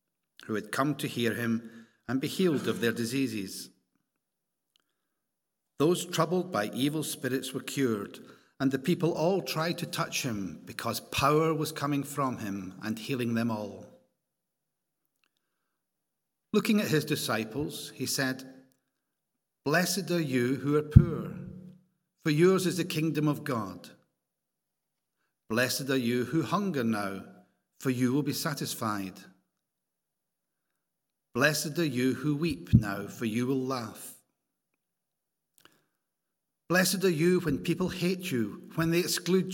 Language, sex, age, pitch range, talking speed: English, male, 60-79, 115-165 Hz, 130 wpm